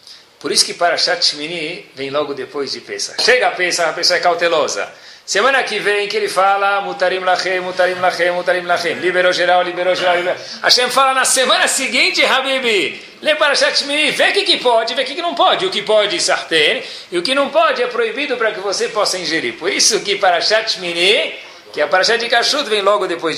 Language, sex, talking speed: Portuguese, male, 215 wpm